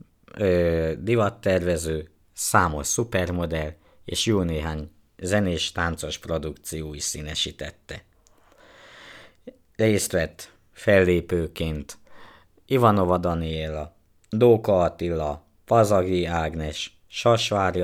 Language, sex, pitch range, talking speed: Hungarian, male, 80-95 Hz, 65 wpm